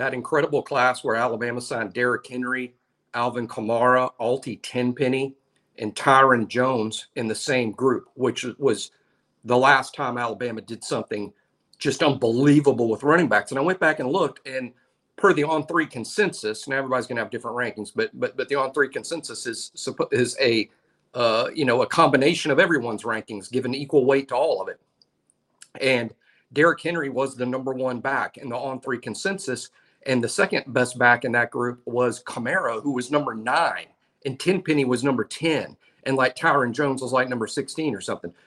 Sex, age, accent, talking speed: male, 50-69, American, 185 wpm